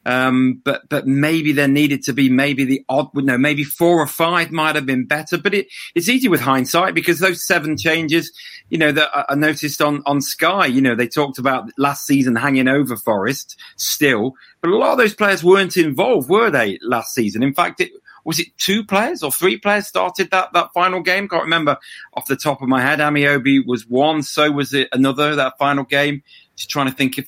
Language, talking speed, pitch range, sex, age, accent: English, 220 wpm, 130-165 Hz, male, 40-59, British